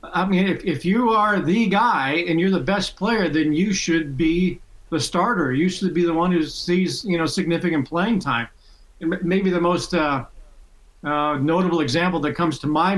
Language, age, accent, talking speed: English, 50-69, American, 200 wpm